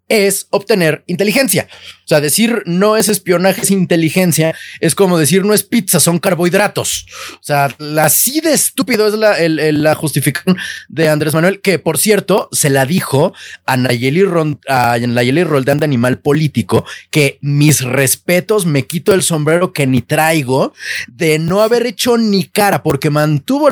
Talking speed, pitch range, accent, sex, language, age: 170 wpm, 155-215 Hz, Mexican, male, Spanish, 30-49